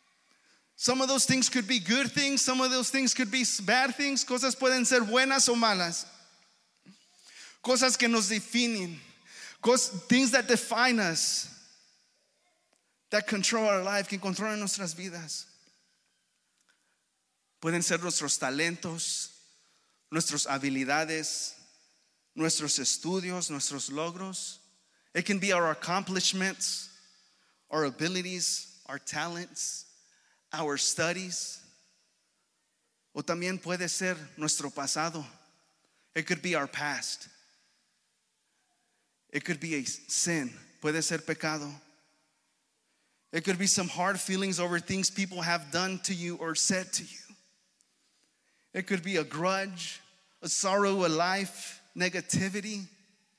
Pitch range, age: 165-215 Hz, 30-49